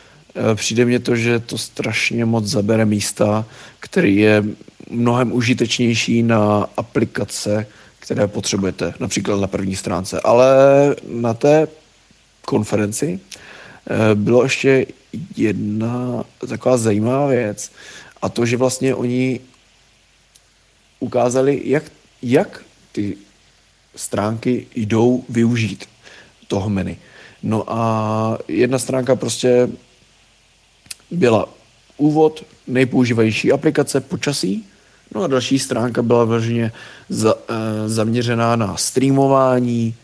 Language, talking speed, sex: Czech, 95 wpm, male